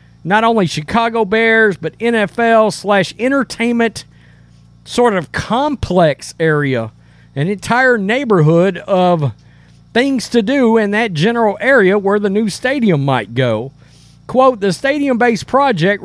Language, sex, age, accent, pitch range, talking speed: English, male, 40-59, American, 165-240 Hz, 125 wpm